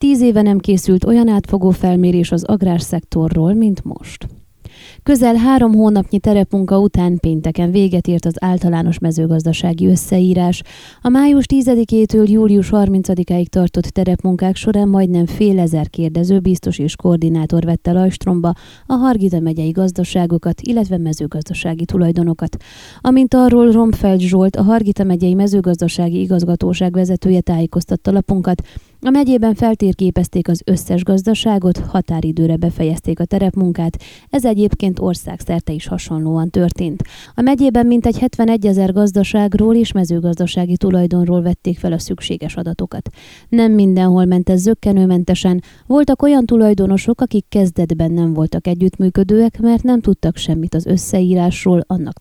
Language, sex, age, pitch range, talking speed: Hungarian, female, 20-39, 175-210 Hz, 125 wpm